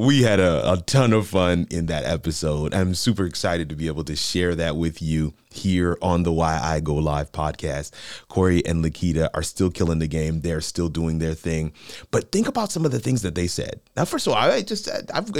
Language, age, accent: English, 30-49, American